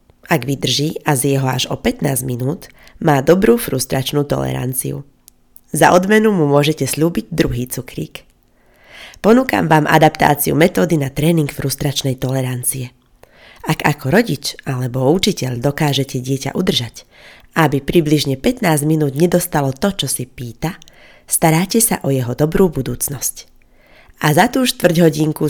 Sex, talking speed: female, 130 wpm